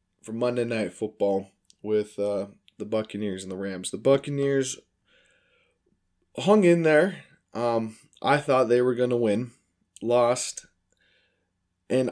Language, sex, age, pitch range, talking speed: English, male, 20-39, 110-140 Hz, 130 wpm